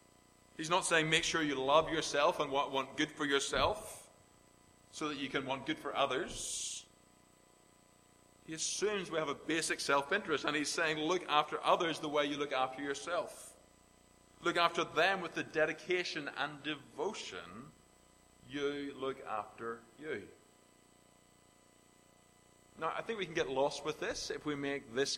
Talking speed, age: 155 wpm, 30-49